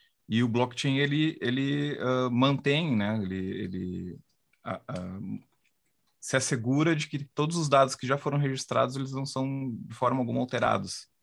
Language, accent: Portuguese, Brazilian